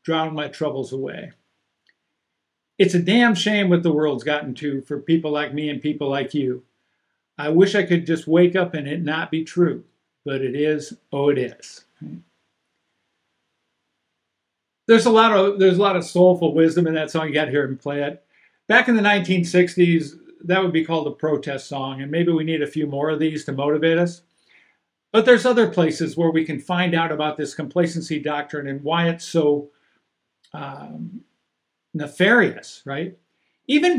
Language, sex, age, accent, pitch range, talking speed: English, male, 50-69, American, 150-190 Hz, 185 wpm